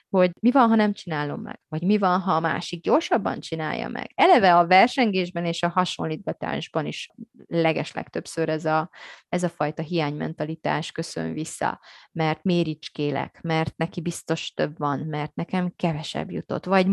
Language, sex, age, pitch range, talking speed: Hungarian, female, 20-39, 160-185 Hz, 155 wpm